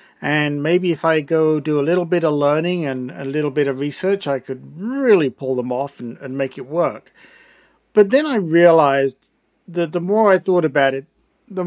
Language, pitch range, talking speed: English, 140-175 Hz, 205 wpm